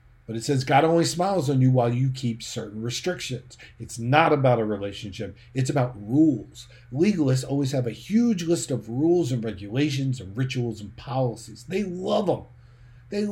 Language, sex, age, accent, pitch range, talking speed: English, male, 50-69, American, 110-135 Hz, 175 wpm